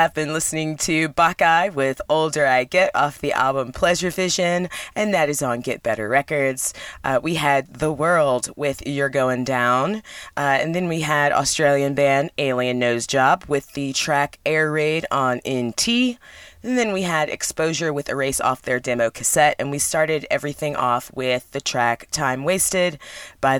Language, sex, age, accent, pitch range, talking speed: English, female, 20-39, American, 140-180 Hz, 175 wpm